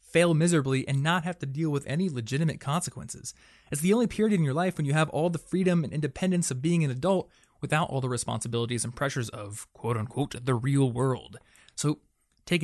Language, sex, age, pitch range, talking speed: English, male, 20-39, 115-160 Hz, 205 wpm